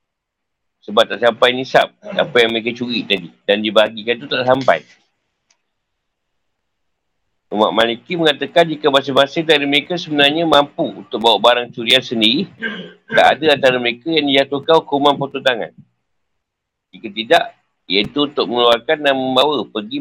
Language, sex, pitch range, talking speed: Malay, male, 100-140 Hz, 135 wpm